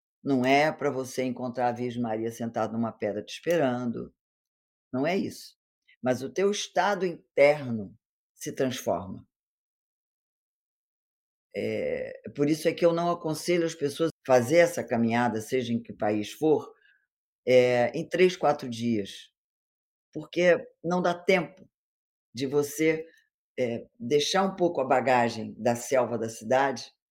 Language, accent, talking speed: Portuguese, Brazilian, 140 wpm